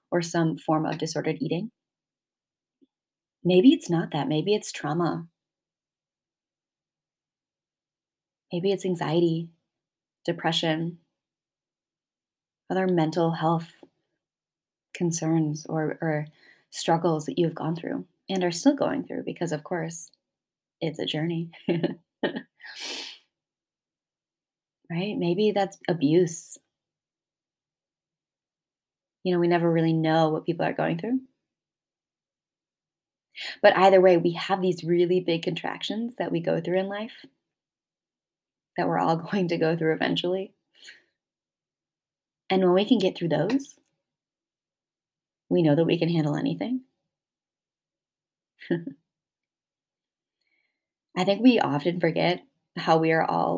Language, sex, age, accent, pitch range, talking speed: English, female, 20-39, American, 160-185 Hz, 110 wpm